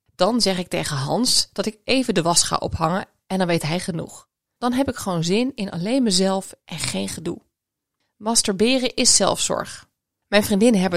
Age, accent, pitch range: 20-39, Dutch, 180-220 Hz